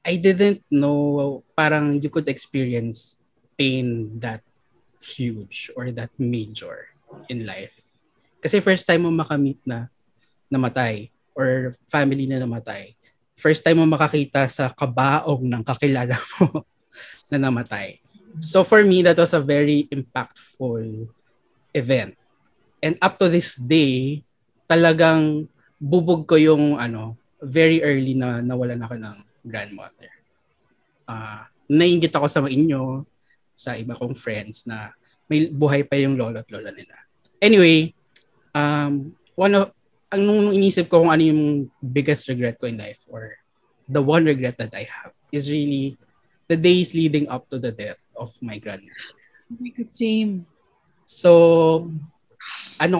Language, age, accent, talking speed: Filipino, 20-39, native, 135 wpm